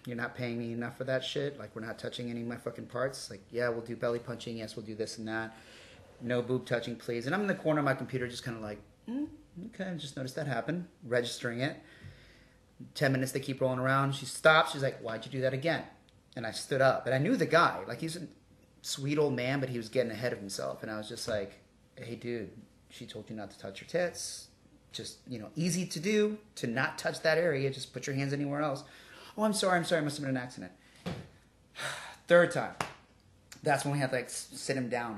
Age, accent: 30-49, American